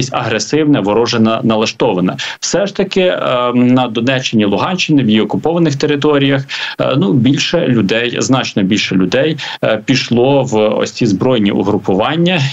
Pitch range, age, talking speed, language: 105-145 Hz, 30-49, 135 wpm, Ukrainian